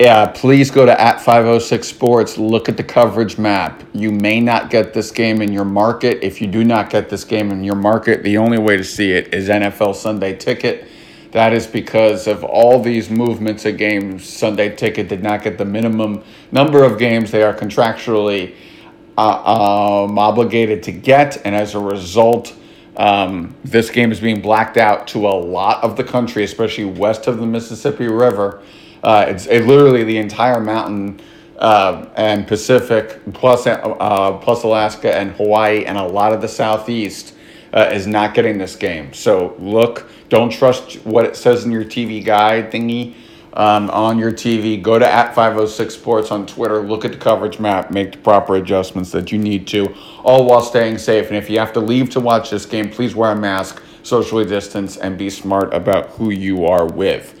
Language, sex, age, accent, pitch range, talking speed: English, male, 50-69, American, 105-115 Hz, 185 wpm